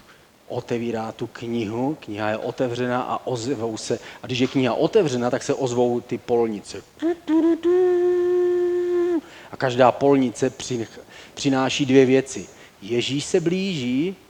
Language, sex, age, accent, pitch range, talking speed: Czech, male, 40-59, native, 115-150 Hz, 115 wpm